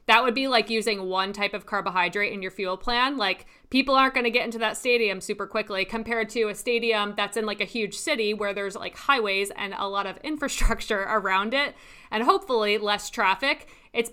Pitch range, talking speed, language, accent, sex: 195-235 Hz, 210 wpm, English, American, female